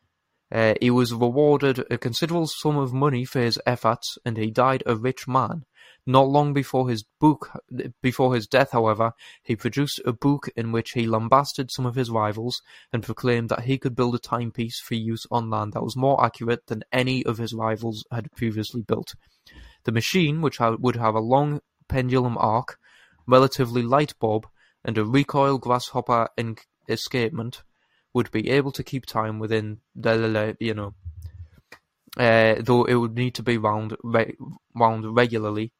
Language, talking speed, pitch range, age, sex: English, 170 wpm, 115-130 Hz, 10-29, male